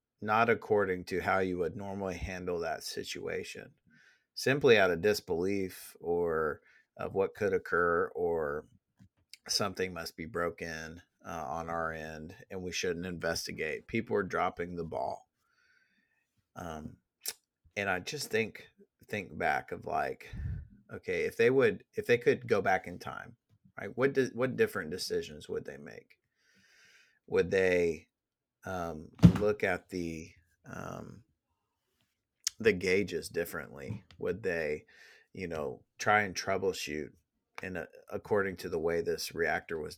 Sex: male